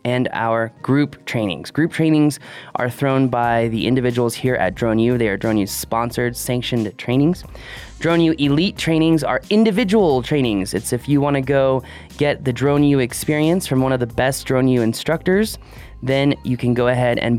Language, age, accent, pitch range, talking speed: English, 20-39, American, 120-155 Hz, 165 wpm